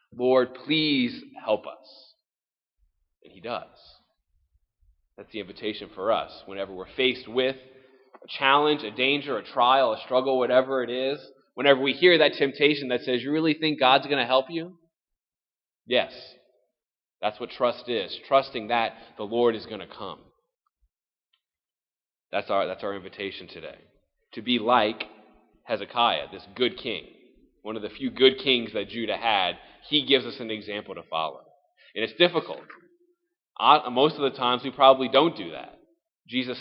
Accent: American